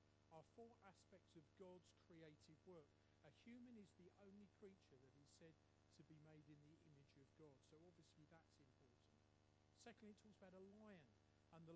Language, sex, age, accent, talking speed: English, male, 50-69, British, 185 wpm